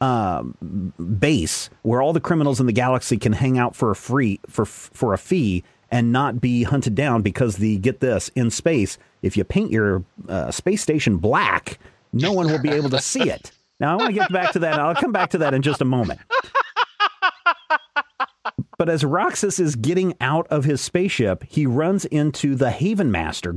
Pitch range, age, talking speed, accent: 110-150 Hz, 40-59, 200 wpm, American